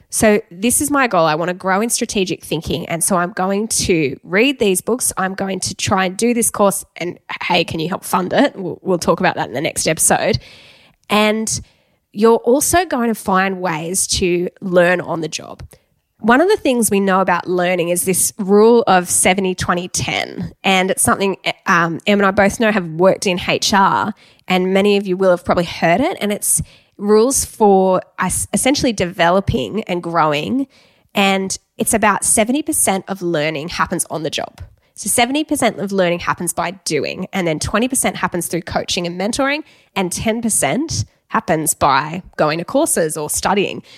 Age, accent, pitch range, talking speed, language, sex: 10-29, Australian, 170-220 Hz, 180 wpm, English, female